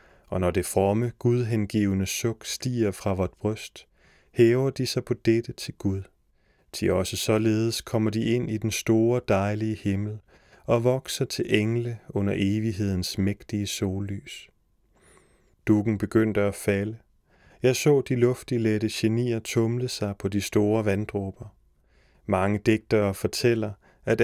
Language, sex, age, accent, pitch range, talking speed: Danish, male, 30-49, native, 100-115 Hz, 135 wpm